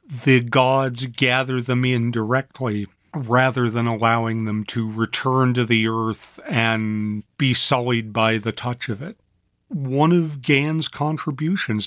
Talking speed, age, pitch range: 135 wpm, 50-69, 115-135 Hz